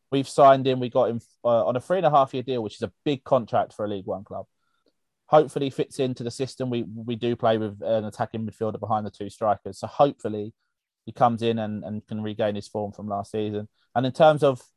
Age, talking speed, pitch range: 30-49, 250 wpm, 110-140 Hz